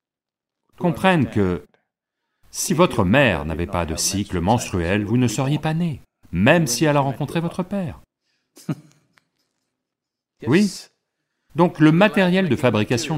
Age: 40-59